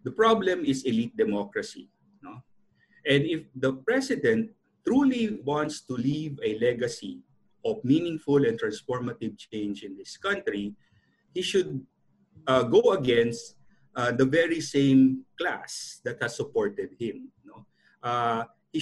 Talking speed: 125 wpm